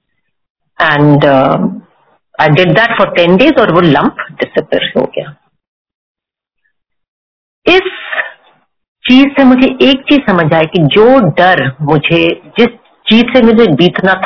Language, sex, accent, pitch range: Hindi, female, native, 190-270 Hz